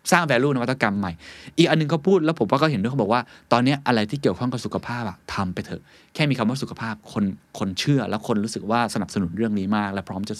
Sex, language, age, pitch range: male, Thai, 20-39, 90-125 Hz